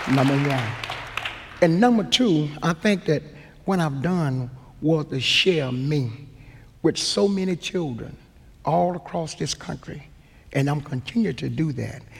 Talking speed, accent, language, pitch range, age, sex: 145 wpm, American, English, 125-185 Hz, 60-79, male